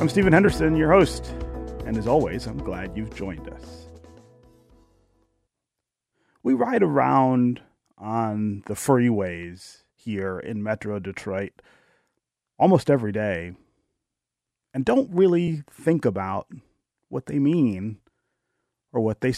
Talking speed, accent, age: 115 wpm, American, 30-49